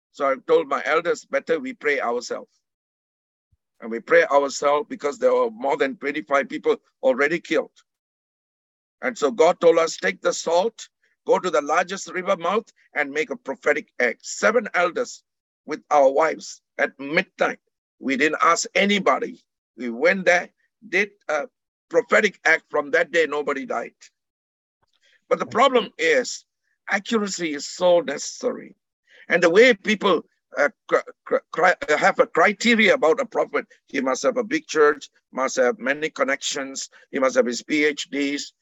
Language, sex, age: English, male, 50-69